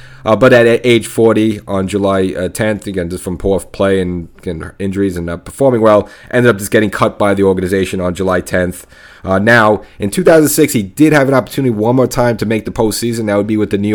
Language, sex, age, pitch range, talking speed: English, male, 30-49, 95-115 Hz, 230 wpm